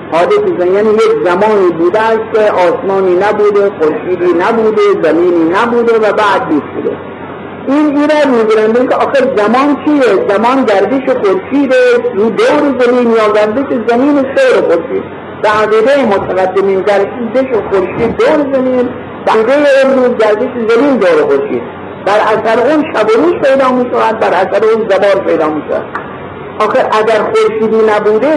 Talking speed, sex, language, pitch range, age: 110 wpm, male, Persian, 190-270 Hz, 50-69